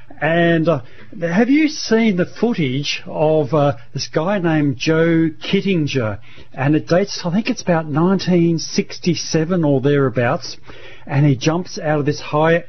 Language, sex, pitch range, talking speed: English, male, 135-165 Hz, 145 wpm